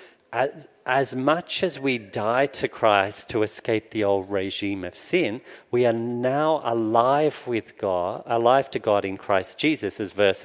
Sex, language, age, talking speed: male, English, 40-59, 160 wpm